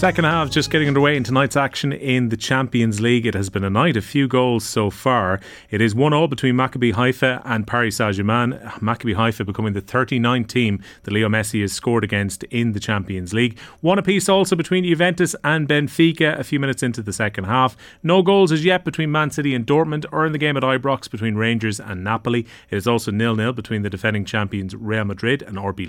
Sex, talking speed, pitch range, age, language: male, 215 wpm, 105-135 Hz, 30-49, English